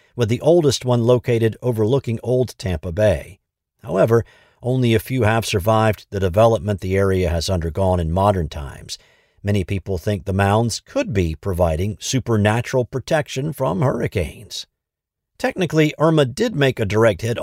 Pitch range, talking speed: 95-120 Hz, 150 wpm